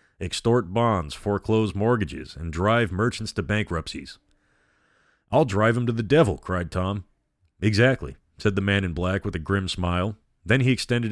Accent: American